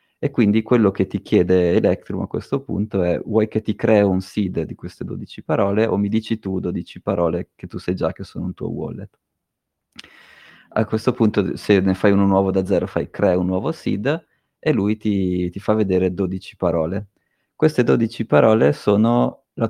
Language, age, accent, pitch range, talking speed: Italian, 30-49, native, 90-110 Hz, 195 wpm